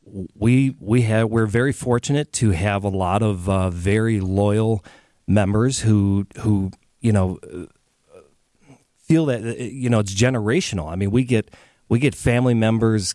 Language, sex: English, male